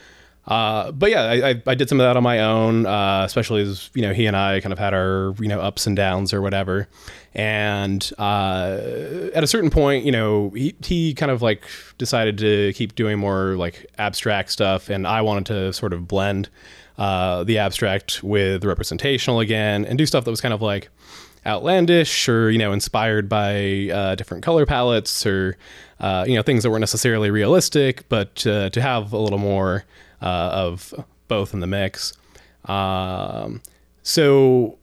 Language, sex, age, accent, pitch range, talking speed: English, male, 20-39, American, 95-115 Hz, 185 wpm